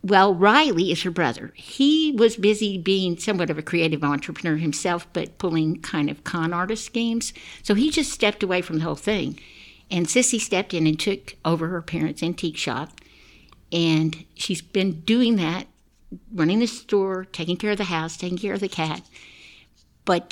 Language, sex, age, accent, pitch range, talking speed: English, female, 60-79, American, 160-210 Hz, 180 wpm